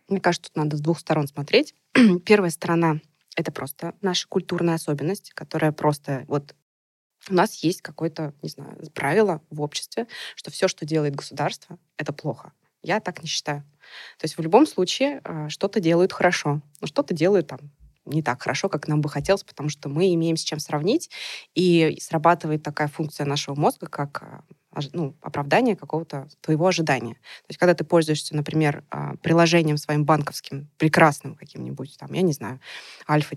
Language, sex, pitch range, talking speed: Russian, female, 145-170 Hz, 165 wpm